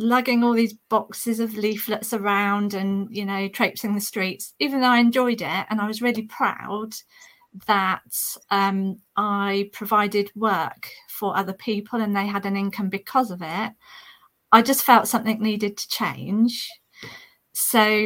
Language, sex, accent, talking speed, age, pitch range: English, female, British, 155 wpm, 40-59, 200-240 Hz